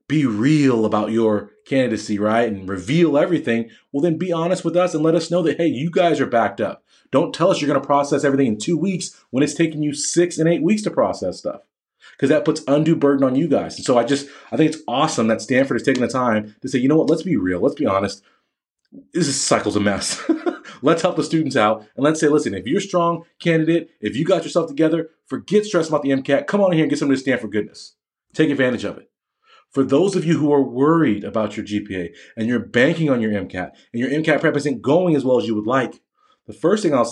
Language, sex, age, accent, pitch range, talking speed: English, male, 30-49, American, 130-170 Hz, 255 wpm